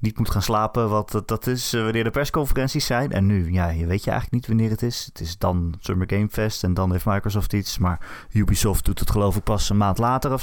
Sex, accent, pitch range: male, Dutch, 95-120 Hz